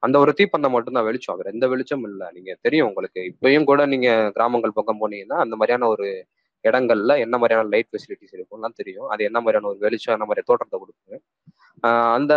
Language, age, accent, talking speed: Tamil, 20-39, native, 175 wpm